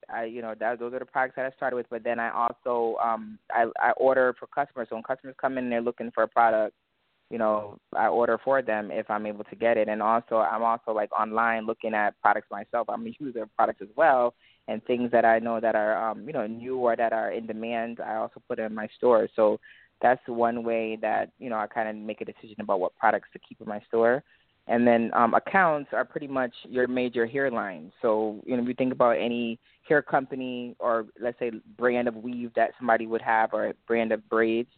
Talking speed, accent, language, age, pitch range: 240 wpm, American, English, 20-39, 110-125 Hz